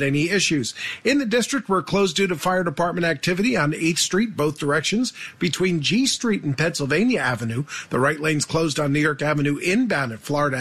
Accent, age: American, 50-69